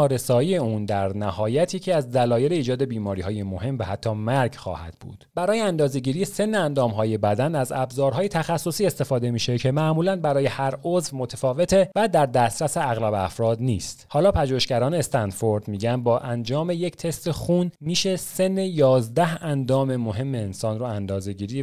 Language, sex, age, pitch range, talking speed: Persian, male, 30-49, 110-155 Hz, 155 wpm